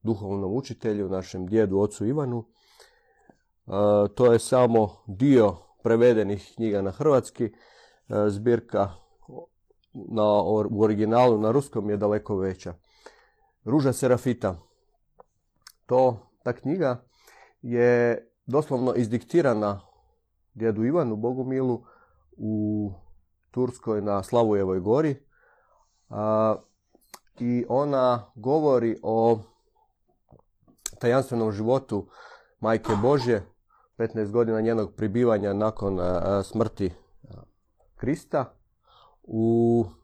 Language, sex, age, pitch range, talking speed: Croatian, male, 40-59, 100-125 Hz, 85 wpm